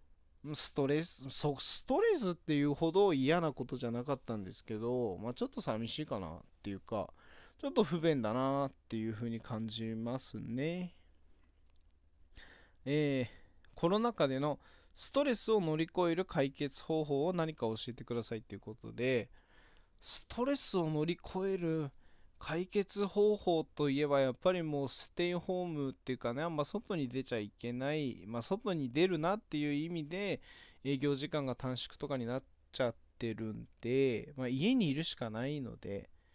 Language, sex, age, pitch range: Japanese, male, 20-39, 115-165 Hz